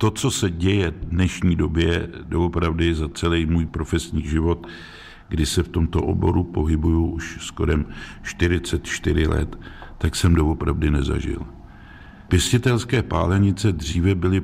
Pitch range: 80-90 Hz